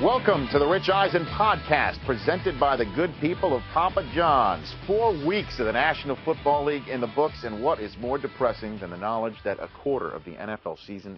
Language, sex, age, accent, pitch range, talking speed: English, male, 50-69, American, 105-135 Hz, 210 wpm